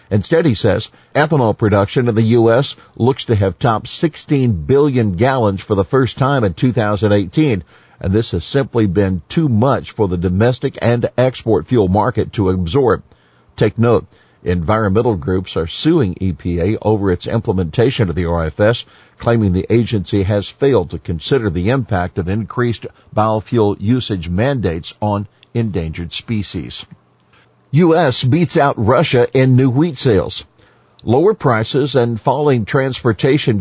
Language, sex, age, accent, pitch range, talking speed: English, male, 50-69, American, 100-125 Hz, 145 wpm